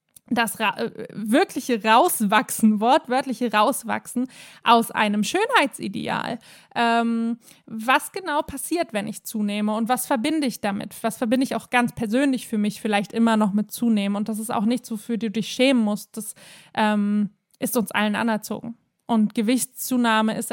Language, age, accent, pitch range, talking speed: German, 20-39, German, 215-255 Hz, 150 wpm